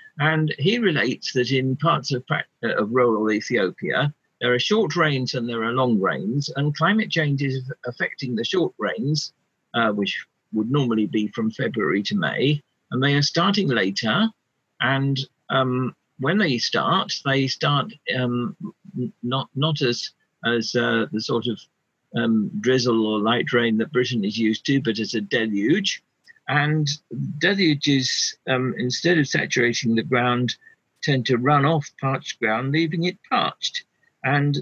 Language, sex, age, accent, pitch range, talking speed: English, male, 50-69, British, 120-155 Hz, 155 wpm